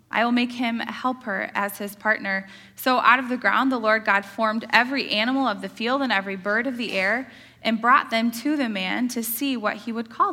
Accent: American